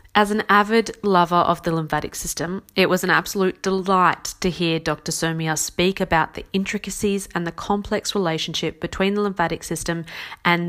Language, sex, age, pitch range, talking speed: English, female, 30-49, 160-195 Hz, 170 wpm